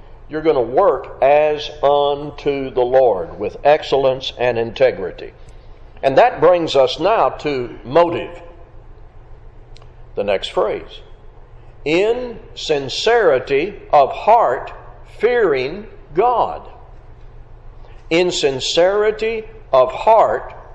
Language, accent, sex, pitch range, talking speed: English, American, male, 130-215 Hz, 95 wpm